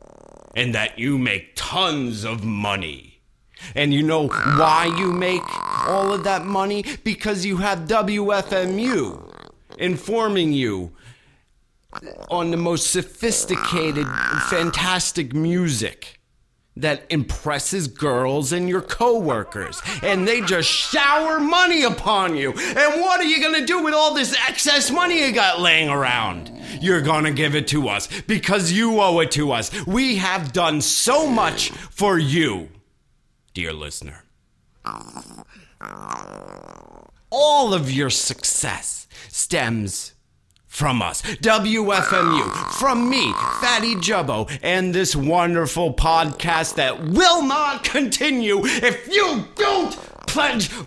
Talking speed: 125 wpm